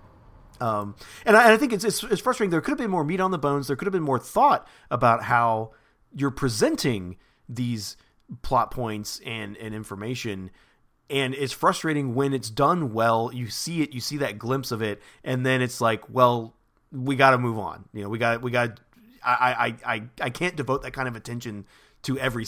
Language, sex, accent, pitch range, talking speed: English, male, American, 115-155 Hz, 205 wpm